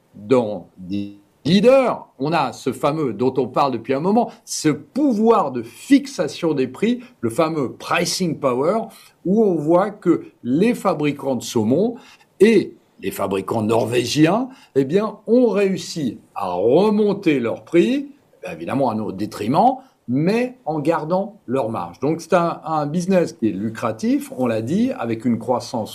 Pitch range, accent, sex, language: 130-200 Hz, French, male, French